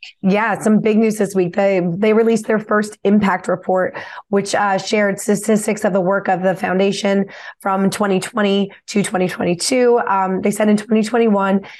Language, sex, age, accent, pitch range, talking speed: English, female, 20-39, American, 190-220 Hz, 165 wpm